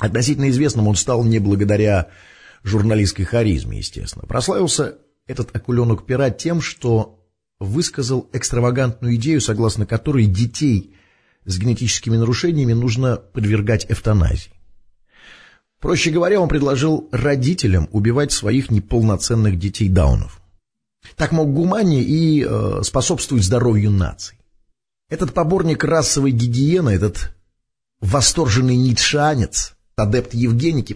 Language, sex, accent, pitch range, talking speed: Russian, male, native, 105-140 Hz, 100 wpm